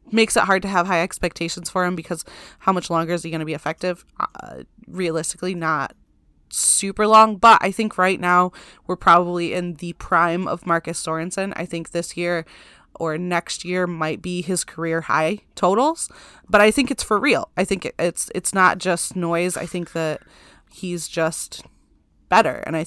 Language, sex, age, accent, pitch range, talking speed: English, female, 20-39, American, 160-185 Hz, 185 wpm